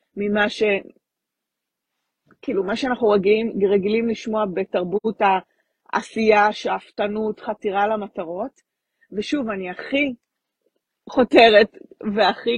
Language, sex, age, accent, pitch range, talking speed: Hebrew, female, 30-49, native, 195-240 Hz, 80 wpm